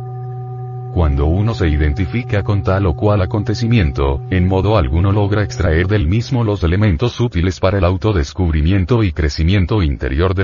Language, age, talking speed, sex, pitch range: Spanish, 40-59, 150 wpm, male, 80-115 Hz